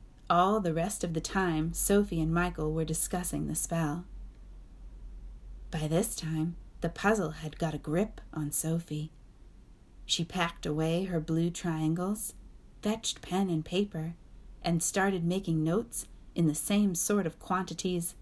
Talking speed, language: 145 wpm, English